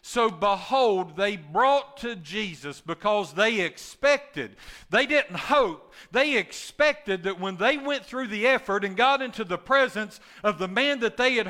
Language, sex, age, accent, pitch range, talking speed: English, male, 50-69, American, 175-240 Hz, 165 wpm